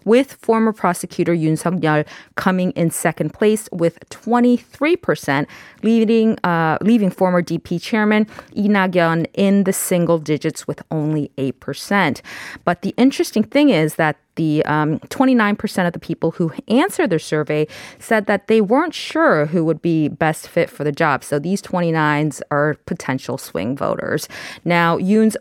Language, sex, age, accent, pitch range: Korean, female, 20-39, American, 155-210 Hz